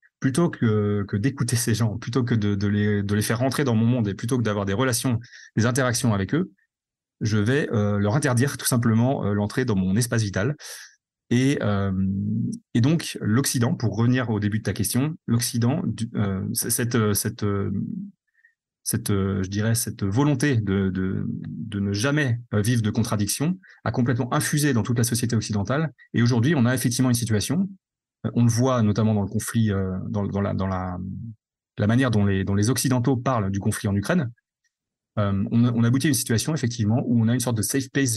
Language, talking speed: French, 200 wpm